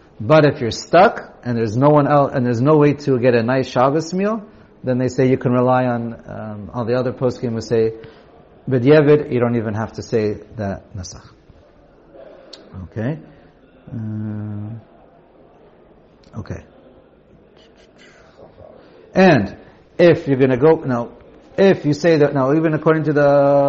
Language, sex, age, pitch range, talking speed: English, male, 50-69, 115-150 Hz, 150 wpm